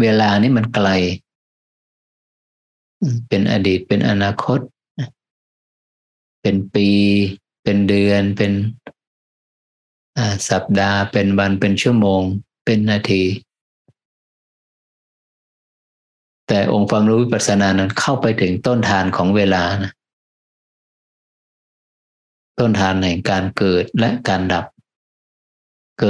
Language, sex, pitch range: Thai, male, 95-110 Hz